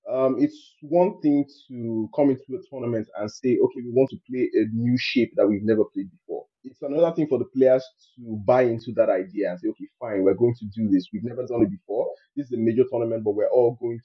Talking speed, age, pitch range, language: 250 wpm, 30-49, 115-155 Hz, English